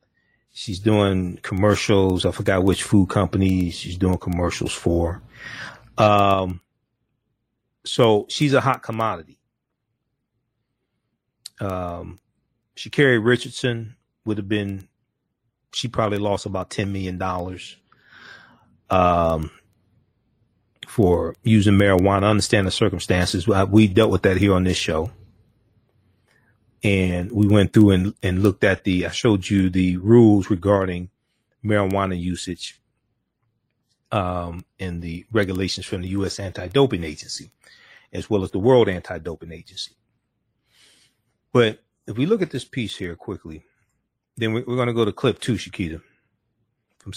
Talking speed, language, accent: 125 wpm, English, American